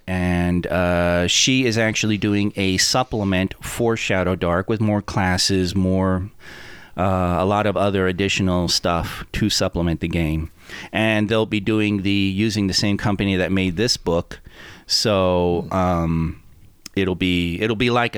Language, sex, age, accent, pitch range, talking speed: English, male, 30-49, American, 90-115 Hz, 150 wpm